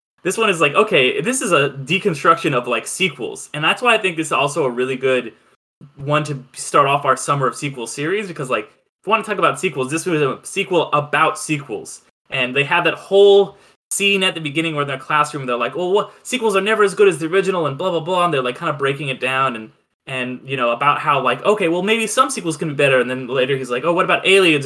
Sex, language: male, English